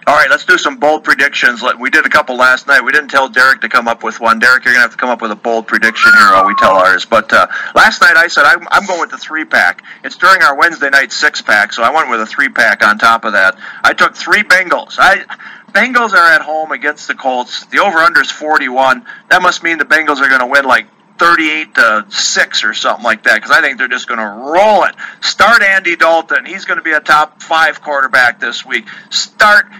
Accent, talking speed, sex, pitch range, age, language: American, 245 wpm, male, 135-205 Hz, 50-69, English